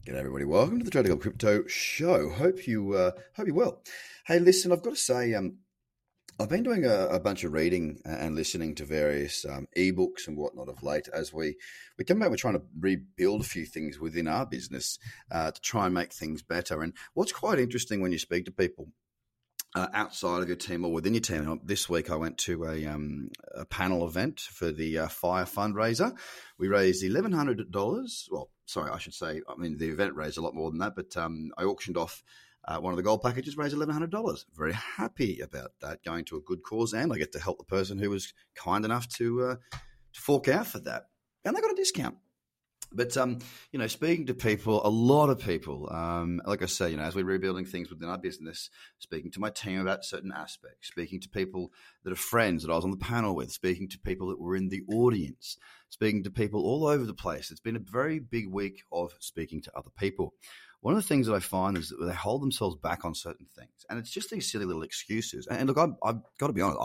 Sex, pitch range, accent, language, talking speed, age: male, 85-120 Hz, Australian, English, 230 wpm, 30-49